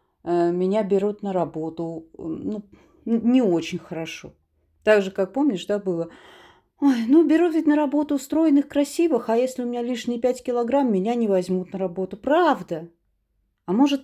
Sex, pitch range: female, 180-265 Hz